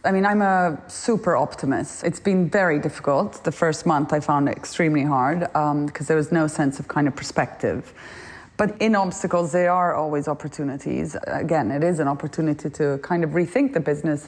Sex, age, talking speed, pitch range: female, 30-49, 195 wpm, 150-185 Hz